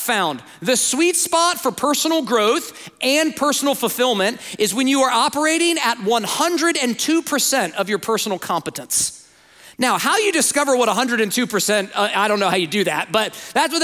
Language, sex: English, male